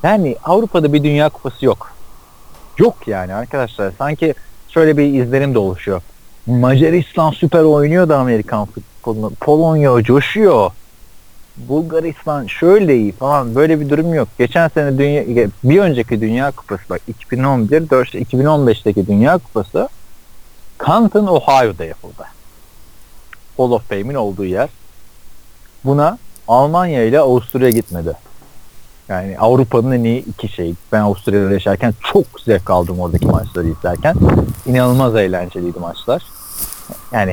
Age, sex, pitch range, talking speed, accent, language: 40-59, male, 110-150 Hz, 115 wpm, native, Turkish